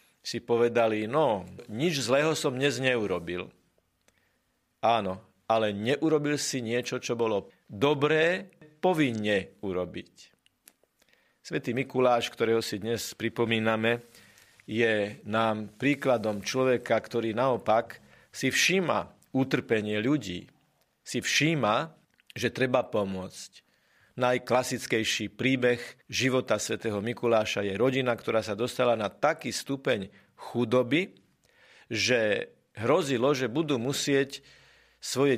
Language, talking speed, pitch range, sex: Slovak, 100 wpm, 110-135 Hz, male